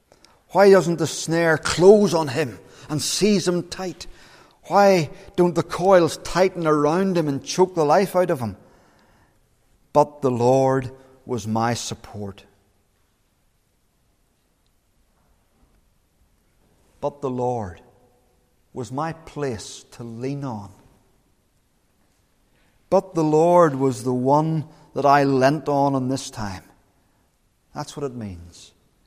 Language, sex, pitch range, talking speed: English, male, 130-175 Hz, 120 wpm